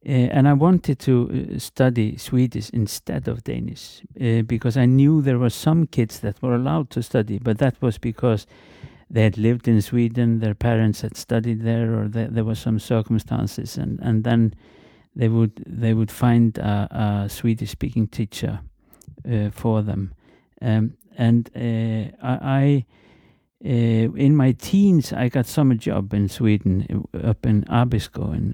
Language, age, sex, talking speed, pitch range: English, 50-69, male, 165 wpm, 105-125 Hz